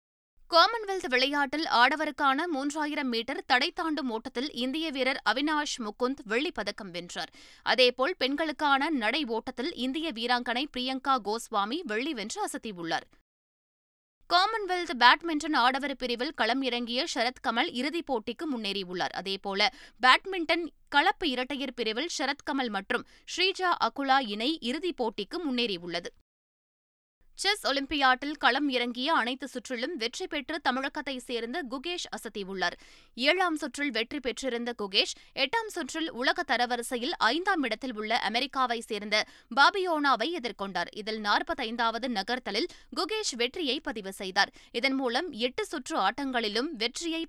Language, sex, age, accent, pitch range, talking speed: Tamil, female, 20-39, native, 235-310 Hz, 115 wpm